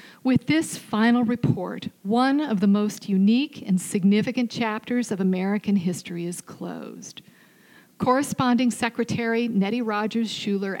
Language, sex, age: English, female, 40-59